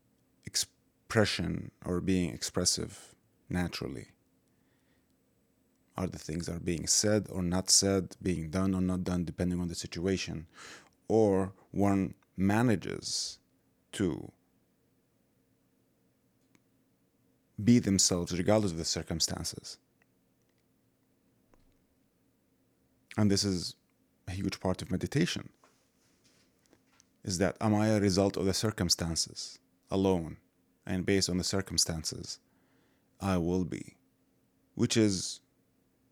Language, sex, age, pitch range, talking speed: English, male, 30-49, 85-100 Hz, 100 wpm